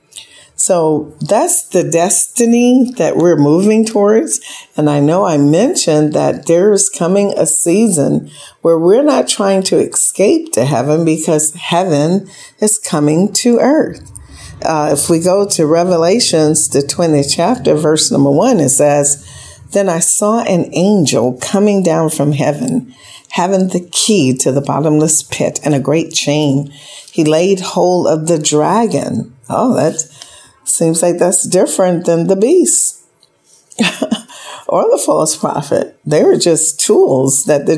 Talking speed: 145 wpm